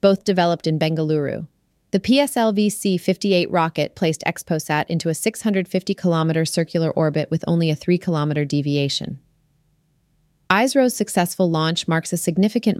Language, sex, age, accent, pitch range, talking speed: English, female, 30-49, American, 150-175 Hz, 115 wpm